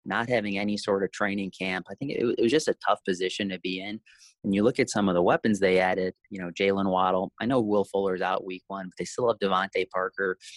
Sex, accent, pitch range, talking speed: male, American, 95-105 Hz, 260 wpm